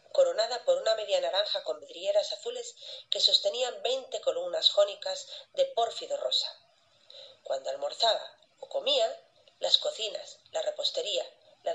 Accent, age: Spanish, 40-59